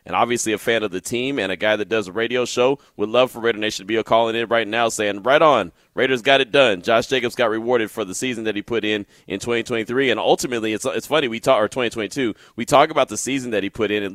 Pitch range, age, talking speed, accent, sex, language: 105-130 Hz, 30-49, 275 wpm, American, male, English